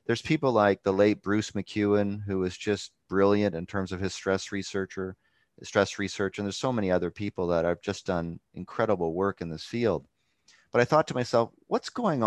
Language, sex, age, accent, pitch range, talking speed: English, male, 30-49, American, 90-110 Hz, 200 wpm